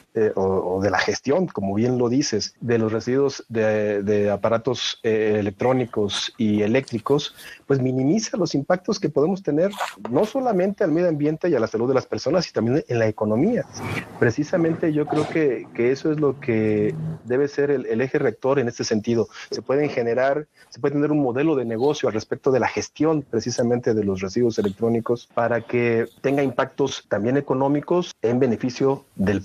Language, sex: Spanish, male